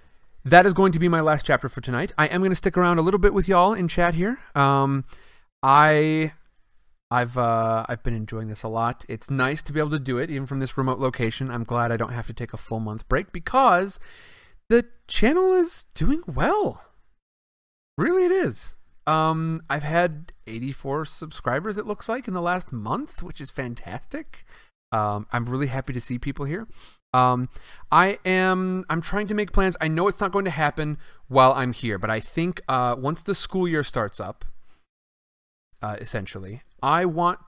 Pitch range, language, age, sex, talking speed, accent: 120-175 Hz, English, 30-49, male, 195 wpm, American